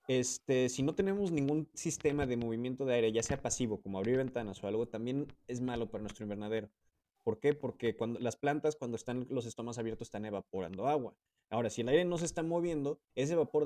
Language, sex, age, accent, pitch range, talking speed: Spanish, male, 20-39, Mexican, 115-140 Hz, 210 wpm